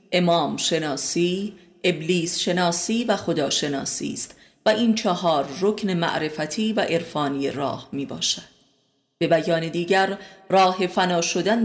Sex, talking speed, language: female, 125 wpm, Persian